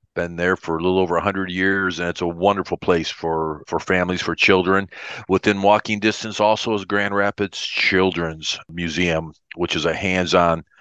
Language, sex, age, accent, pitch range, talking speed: English, male, 50-69, American, 85-100 Hz, 180 wpm